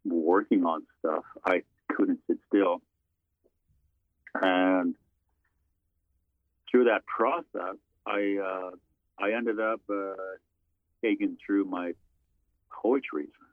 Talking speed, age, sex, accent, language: 95 wpm, 50-69, male, American, English